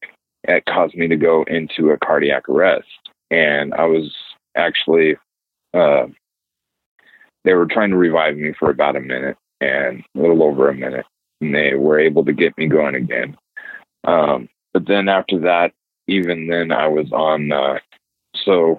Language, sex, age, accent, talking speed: English, male, 30-49, American, 165 wpm